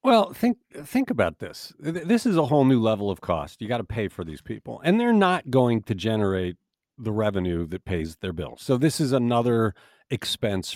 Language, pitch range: English, 110-155 Hz